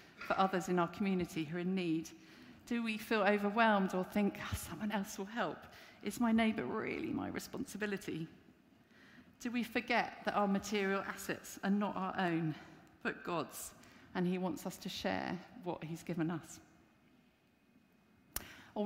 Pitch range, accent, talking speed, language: 175-210 Hz, British, 155 wpm, English